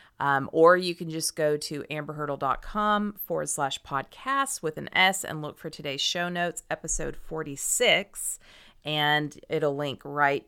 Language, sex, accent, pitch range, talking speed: English, female, American, 145-185 Hz, 150 wpm